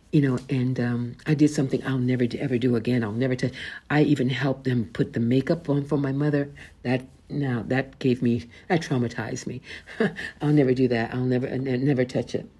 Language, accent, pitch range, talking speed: English, American, 115-155 Hz, 210 wpm